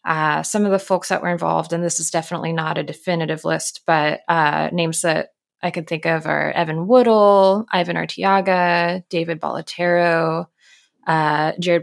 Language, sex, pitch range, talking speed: English, female, 165-200 Hz, 170 wpm